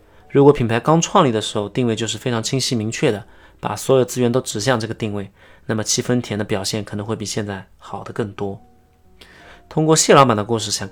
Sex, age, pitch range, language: male, 20-39, 100-125 Hz, Chinese